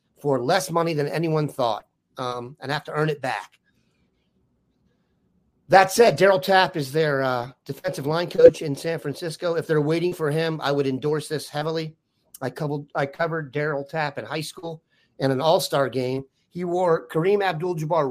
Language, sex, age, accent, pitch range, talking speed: English, male, 40-59, American, 140-180 Hz, 170 wpm